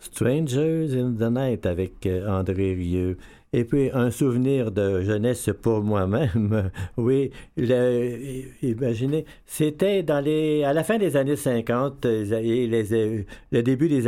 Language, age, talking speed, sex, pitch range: French, 60-79, 130 wpm, male, 105-135 Hz